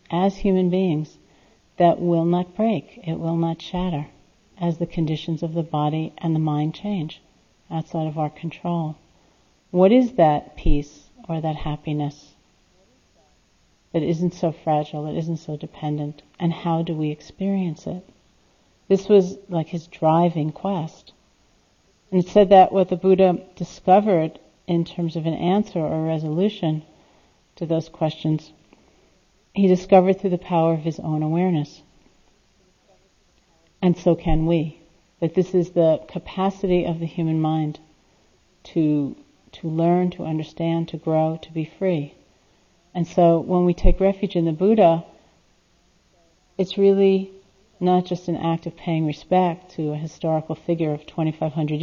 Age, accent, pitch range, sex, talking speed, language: 50-69, American, 160-185 Hz, female, 145 wpm, English